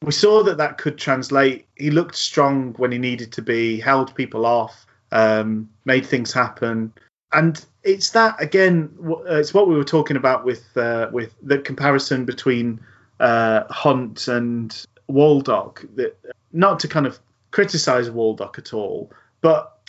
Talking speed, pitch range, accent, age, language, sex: 150 wpm, 115-150 Hz, British, 30-49, English, male